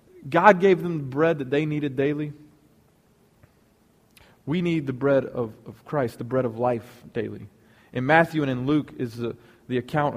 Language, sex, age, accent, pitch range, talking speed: English, male, 30-49, American, 120-155 Hz, 175 wpm